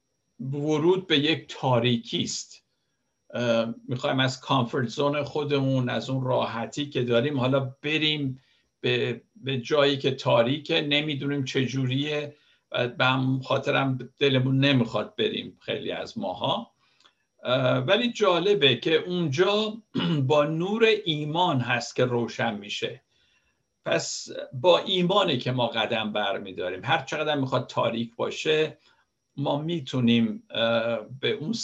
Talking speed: 110 wpm